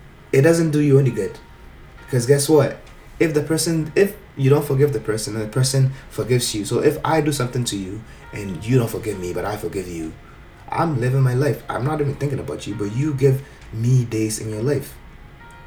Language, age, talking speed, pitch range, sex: English, 20-39, 220 wpm, 115-145 Hz, male